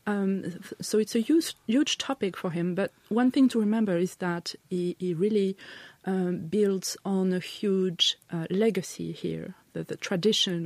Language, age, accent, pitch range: English, 30-49, French, 175-210 Hz